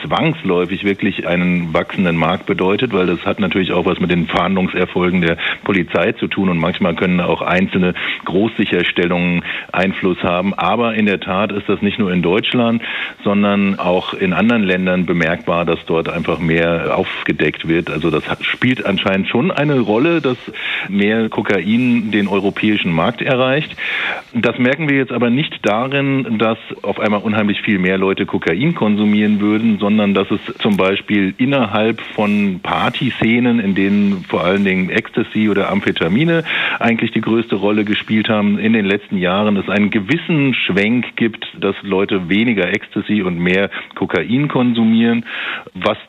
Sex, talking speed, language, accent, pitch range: male, 160 wpm, German, German, 95-120 Hz